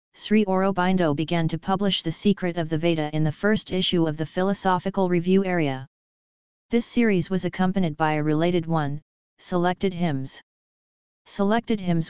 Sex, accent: female, American